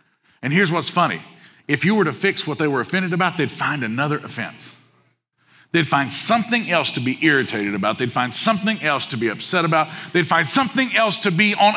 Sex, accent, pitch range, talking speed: male, American, 125-185 Hz, 210 wpm